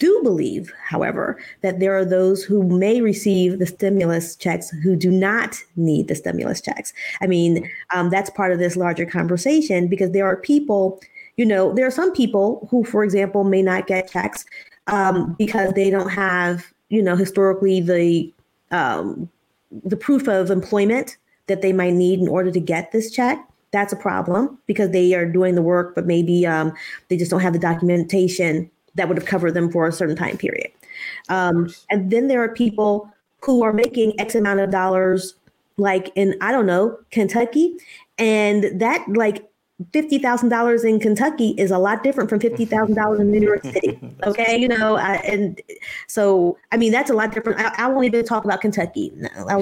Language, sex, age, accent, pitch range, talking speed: English, female, 30-49, American, 185-235 Hz, 185 wpm